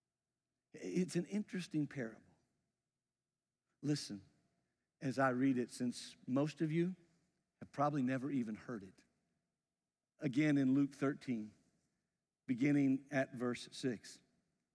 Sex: male